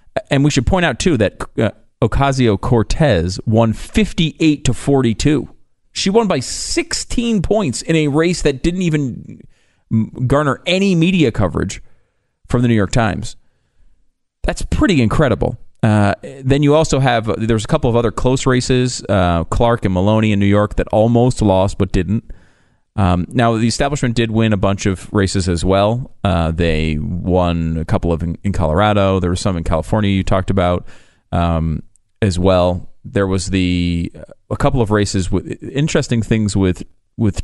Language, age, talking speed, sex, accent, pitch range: English, 40-59, 165 wpm, male, American, 90-125 Hz